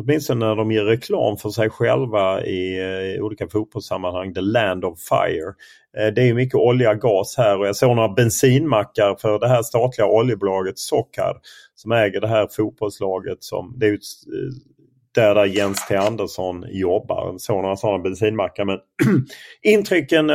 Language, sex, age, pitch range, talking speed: Swedish, male, 30-49, 95-120 Hz, 165 wpm